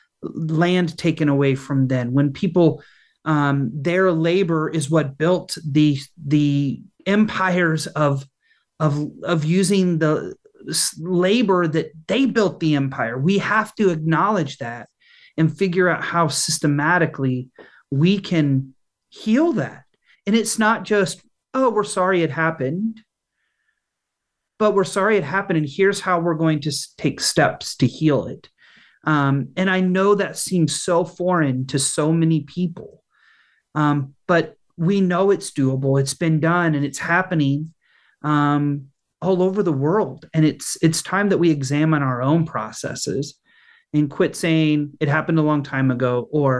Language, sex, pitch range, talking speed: English, male, 145-180 Hz, 150 wpm